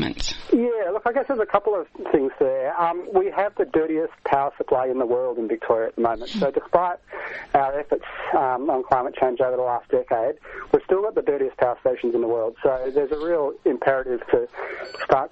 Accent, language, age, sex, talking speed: Australian, English, 40-59, male, 215 wpm